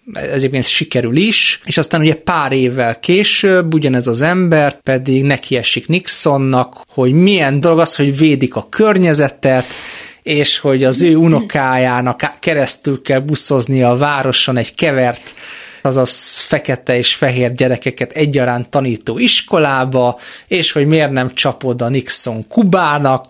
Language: Hungarian